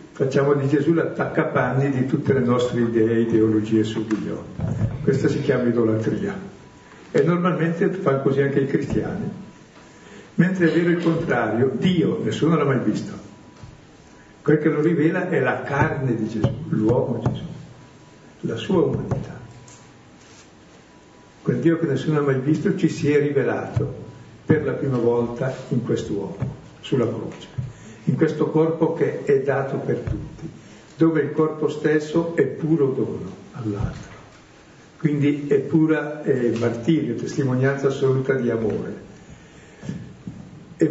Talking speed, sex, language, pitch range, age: 135 wpm, male, Italian, 120-160 Hz, 60-79